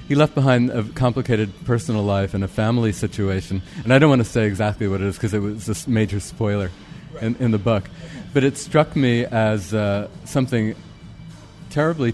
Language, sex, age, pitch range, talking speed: English, male, 40-59, 105-125 Hz, 195 wpm